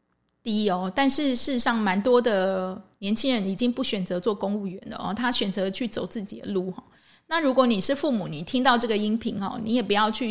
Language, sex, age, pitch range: Chinese, female, 20-39, 205-265 Hz